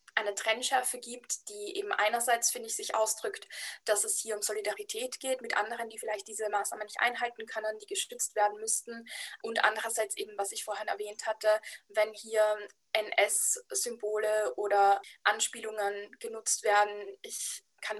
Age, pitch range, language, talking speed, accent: 20-39, 215-260 Hz, German, 155 wpm, German